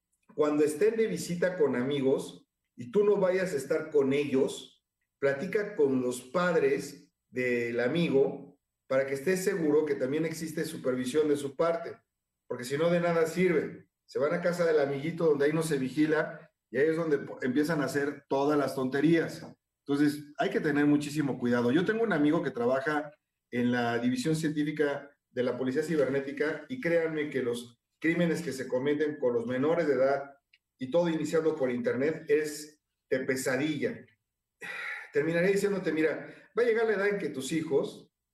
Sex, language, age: male, Spanish, 50-69